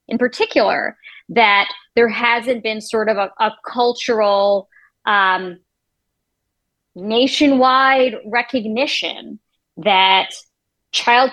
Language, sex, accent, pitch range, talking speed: English, female, American, 200-260 Hz, 85 wpm